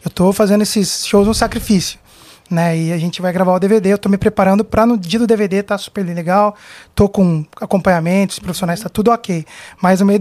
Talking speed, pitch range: 215 wpm, 185-225 Hz